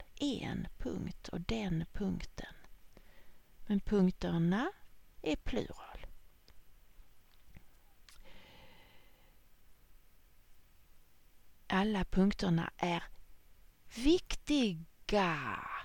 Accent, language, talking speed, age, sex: Swedish, English, 50 wpm, 40-59, female